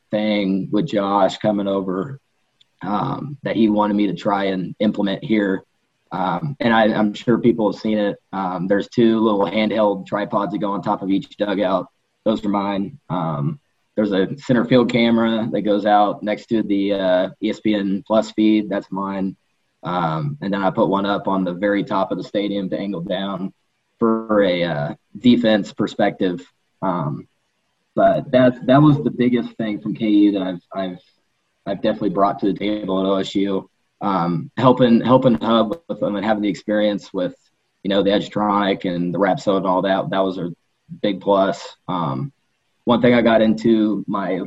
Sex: male